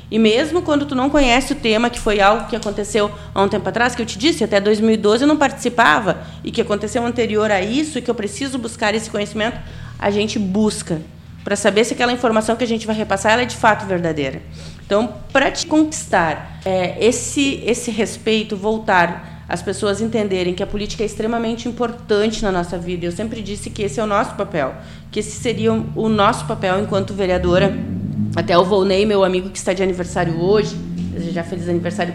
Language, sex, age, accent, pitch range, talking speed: Portuguese, female, 30-49, Brazilian, 190-235 Hz, 200 wpm